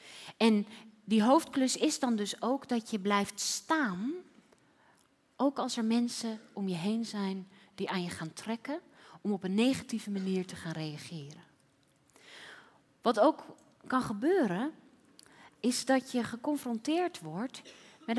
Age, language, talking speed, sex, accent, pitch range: 30-49, Dutch, 140 wpm, female, Dutch, 215-280 Hz